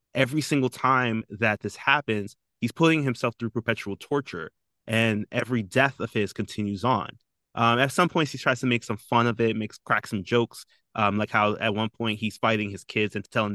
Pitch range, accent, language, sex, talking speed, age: 105-130 Hz, American, English, male, 210 wpm, 20-39